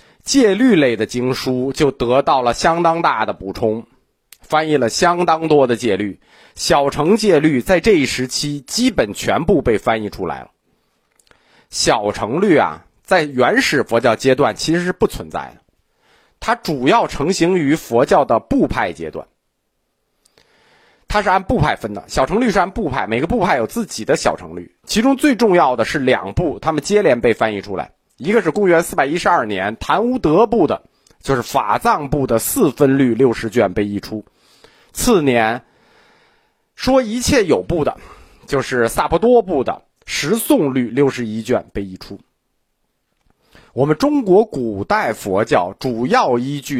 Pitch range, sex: 120-175 Hz, male